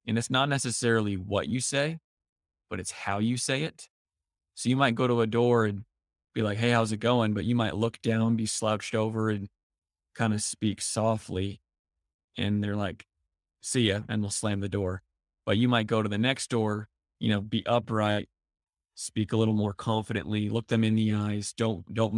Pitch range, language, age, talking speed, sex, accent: 100-115 Hz, English, 20-39, 200 wpm, male, American